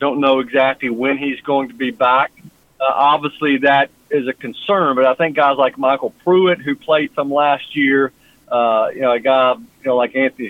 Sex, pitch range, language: male, 135-170 Hz, English